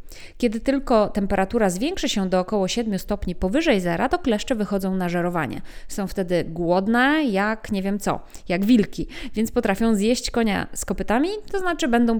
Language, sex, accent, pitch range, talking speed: Polish, female, native, 185-245 Hz, 165 wpm